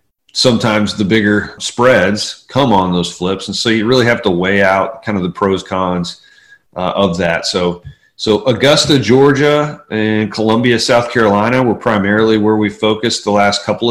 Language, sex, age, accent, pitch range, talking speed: English, male, 40-59, American, 95-115 Hz, 175 wpm